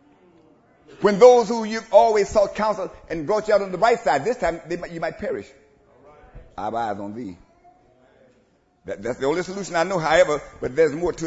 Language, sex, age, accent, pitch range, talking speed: English, male, 60-79, American, 105-145 Hz, 210 wpm